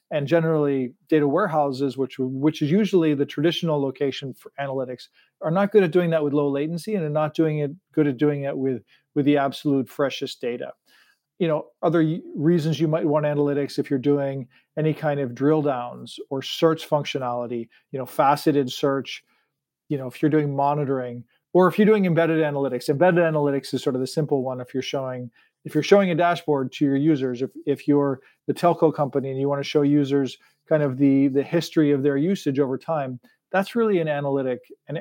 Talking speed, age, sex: 205 wpm, 40-59, male